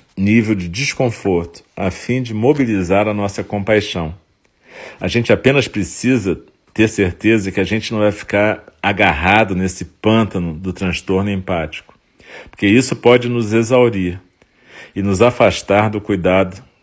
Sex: male